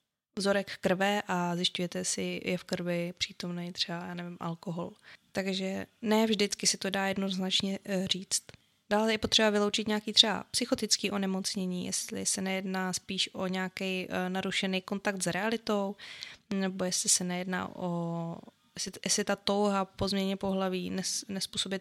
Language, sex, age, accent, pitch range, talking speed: Czech, female, 20-39, native, 185-210 Hz, 145 wpm